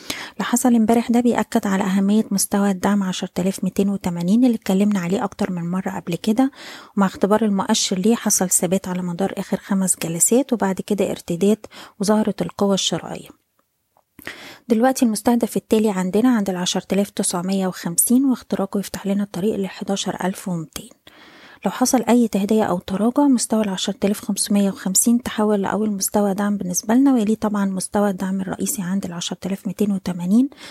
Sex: female